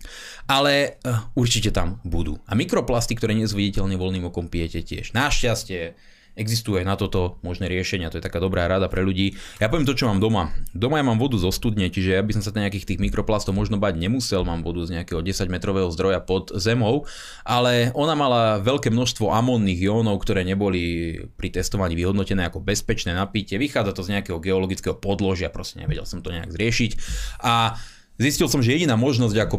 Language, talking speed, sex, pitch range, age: Slovak, 185 wpm, male, 95-115 Hz, 20-39